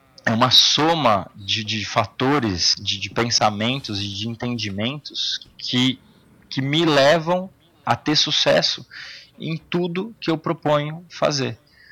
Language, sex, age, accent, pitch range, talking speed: Portuguese, male, 20-39, Brazilian, 115-150 Hz, 125 wpm